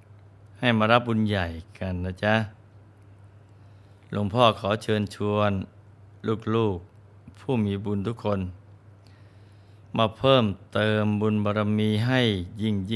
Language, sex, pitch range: Thai, male, 100-110 Hz